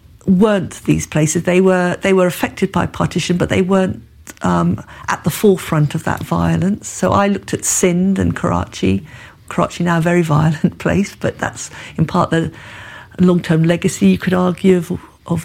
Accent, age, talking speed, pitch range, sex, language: British, 50-69, 175 wpm, 160-190 Hz, female, English